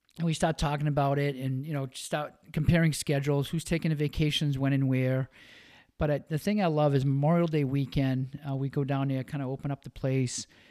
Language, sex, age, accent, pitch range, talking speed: English, male, 50-69, American, 130-150 Hz, 220 wpm